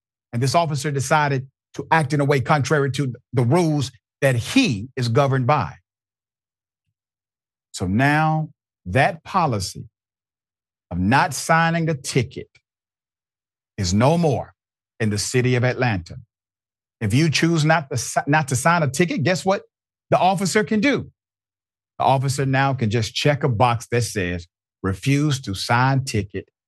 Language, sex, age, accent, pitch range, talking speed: English, male, 50-69, American, 100-135 Hz, 145 wpm